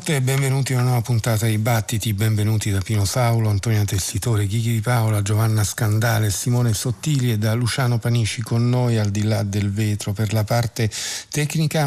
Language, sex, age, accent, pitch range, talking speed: Italian, male, 50-69, native, 100-120 Hz, 180 wpm